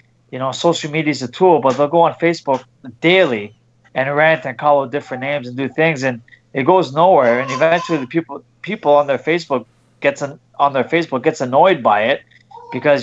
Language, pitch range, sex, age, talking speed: English, 130-160 Hz, male, 20-39, 205 wpm